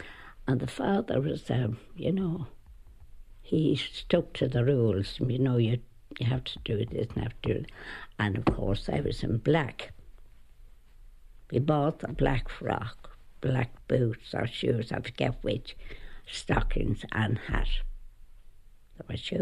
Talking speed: 155 wpm